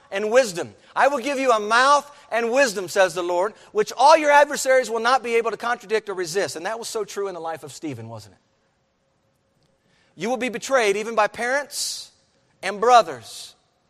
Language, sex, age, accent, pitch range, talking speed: English, male, 40-59, American, 165-235 Hz, 200 wpm